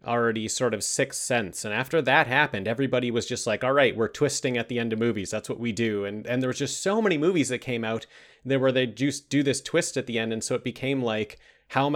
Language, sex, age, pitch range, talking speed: English, male, 30-49, 120-150 Hz, 270 wpm